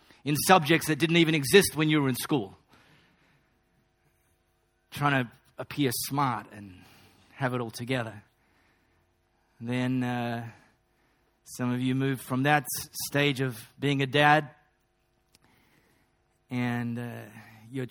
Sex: male